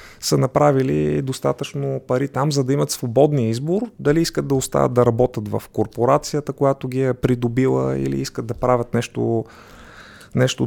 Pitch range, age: 115-140 Hz, 30-49